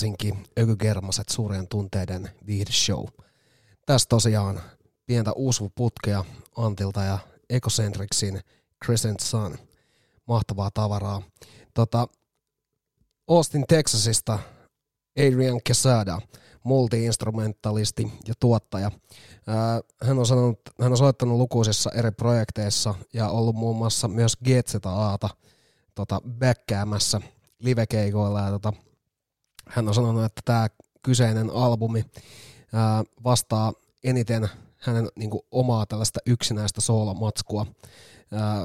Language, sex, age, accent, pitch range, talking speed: Finnish, male, 30-49, native, 105-120 Hz, 100 wpm